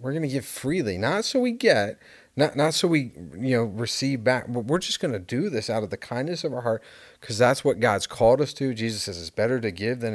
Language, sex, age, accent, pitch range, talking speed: English, male, 40-59, American, 115-150 Hz, 260 wpm